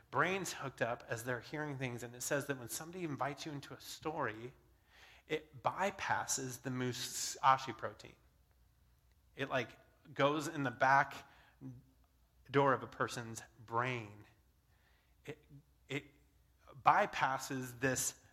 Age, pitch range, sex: 30-49, 120-150 Hz, male